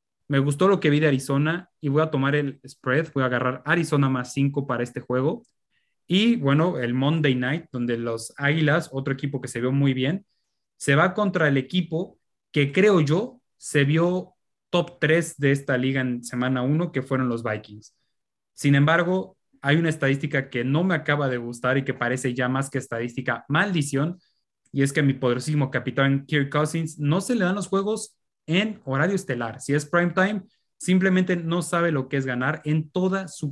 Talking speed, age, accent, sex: 195 wpm, 20-39, Mexican, male